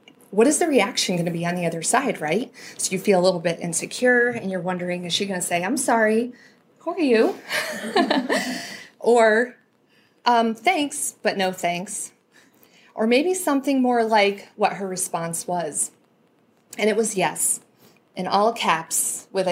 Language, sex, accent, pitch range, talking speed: English, female, American, 180-230 Hz, 170 wpm